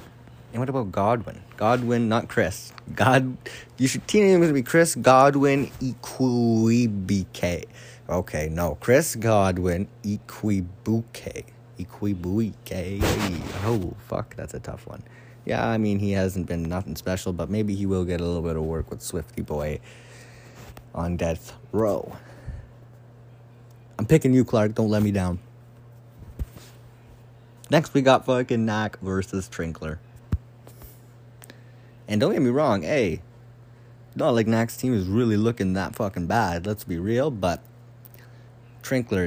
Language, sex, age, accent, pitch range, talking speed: English, male, 20-39, American, 95-120 Hz, 140 wpm